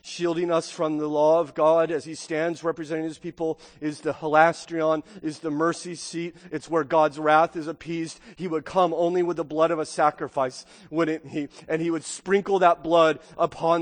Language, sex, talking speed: English, male, 195 wpm